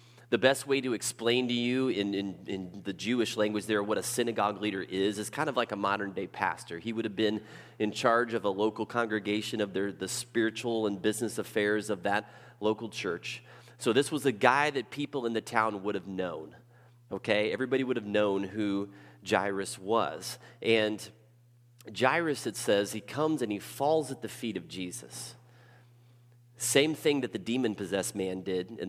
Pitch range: 105-125 Hz